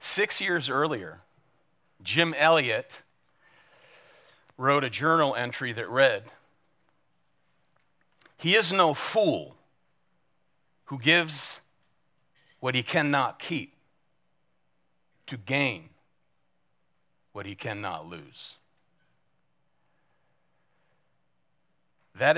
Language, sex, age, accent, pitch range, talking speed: English, male, 40-59, American, 105-145 Hz, 75 wpm